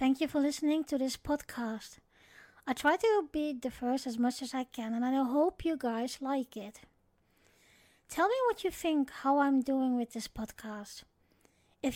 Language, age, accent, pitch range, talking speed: English, 20-39, Dutch, 230-300 Hz, 185 wpm